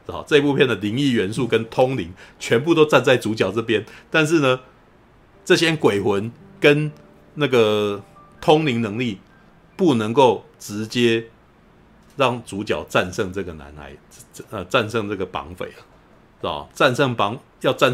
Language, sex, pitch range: Chinese, male, 90-120 Hz